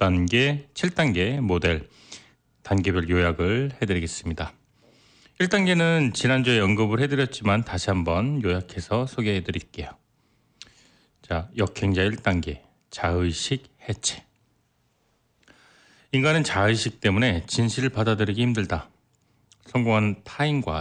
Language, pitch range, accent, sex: Korean, 90-130 Hz, native, male